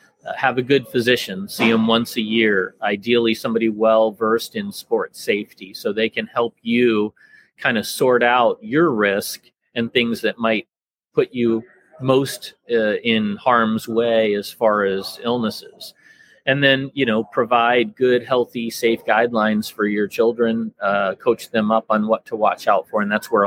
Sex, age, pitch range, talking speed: male, 30-49, 110-125 Hz, 170 wpm